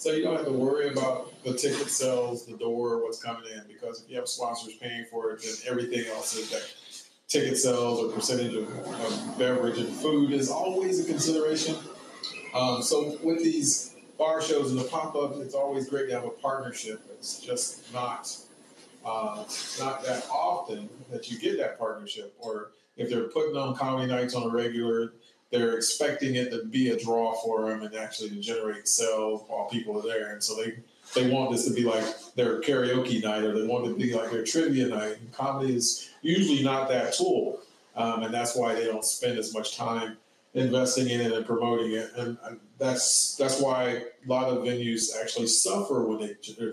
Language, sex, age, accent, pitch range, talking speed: English, male, 30-49, American, 115-135 Hz, 200 wpm